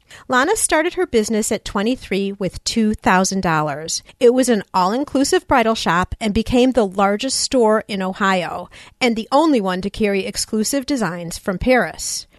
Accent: American